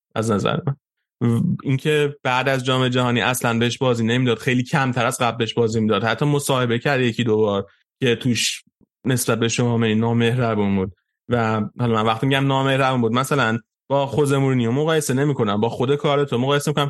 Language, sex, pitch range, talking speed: Persian, male, 115-150 Hz, 190 wpm